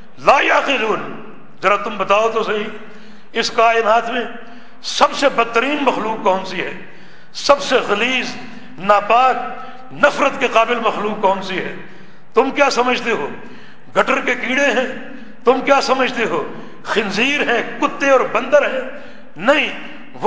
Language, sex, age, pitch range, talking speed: Urdu, male, 60-79, 210-260 Hz, 135 wpm